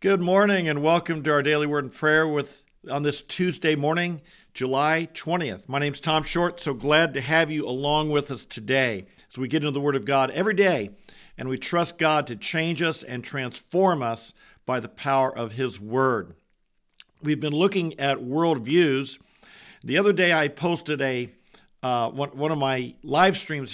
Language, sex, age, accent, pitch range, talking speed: English, male, 50-69, American, 135-160 Hz, 190 wpm